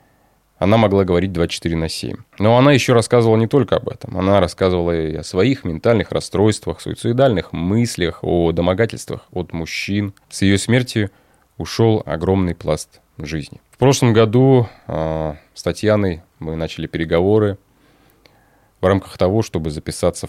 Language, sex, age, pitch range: Russian, male, 20-39, 85-110 Hz